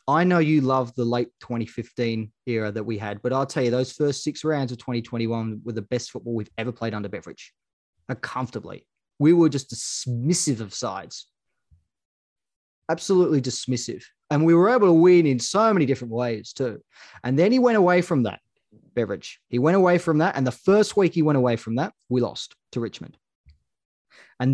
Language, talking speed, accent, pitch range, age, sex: English, 190 wpm, Australian, 115-155 Hz, 20-39, male